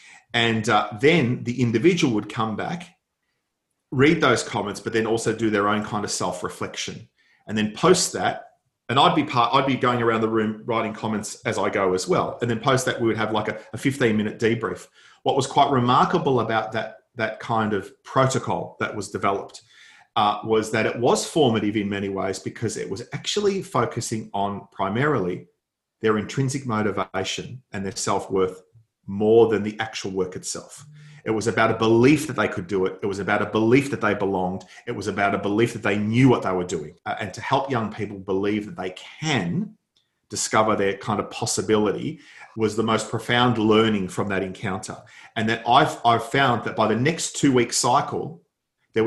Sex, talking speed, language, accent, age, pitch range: male, 195 wpm, English, Australian, 40-59, 105-125 Hz